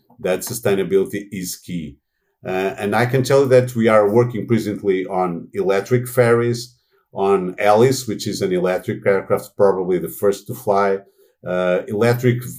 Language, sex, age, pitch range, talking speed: German, male, 50-69, 95-125 Hz, 155 wpm